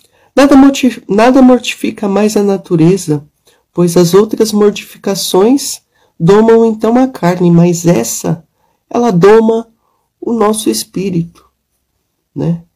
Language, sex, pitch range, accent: Portuguese, male, 160-205 Hz, Brazilian